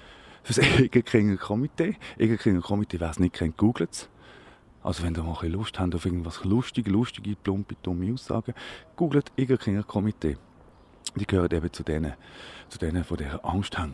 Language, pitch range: German, 90-125 Hz